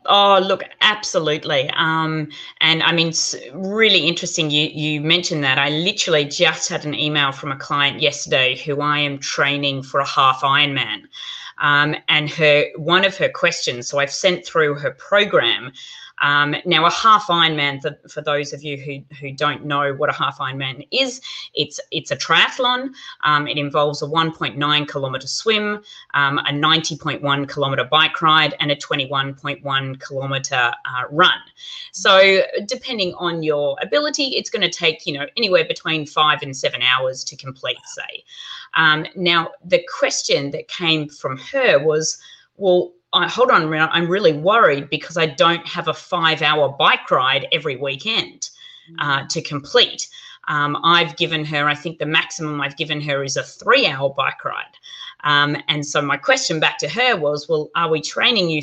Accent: Australian